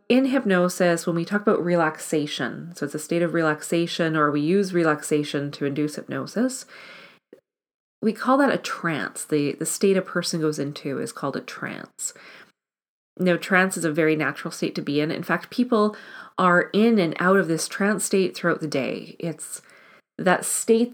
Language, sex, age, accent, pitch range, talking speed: English, female, 30-49, American, 155-195 Hz, 180 wpm